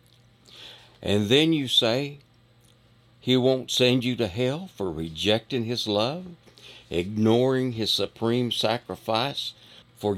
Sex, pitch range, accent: male, 110-130 Hz, American